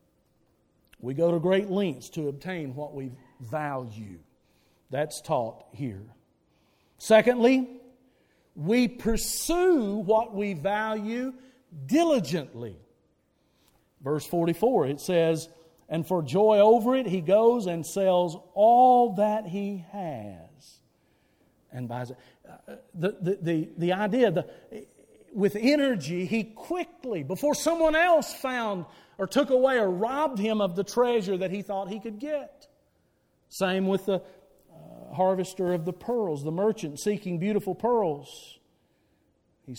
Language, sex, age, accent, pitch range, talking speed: English, male, 50-69, American, 160-225 Hz, 125 wpm